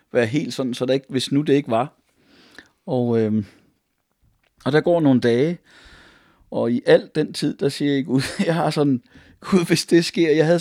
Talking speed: 205 wpm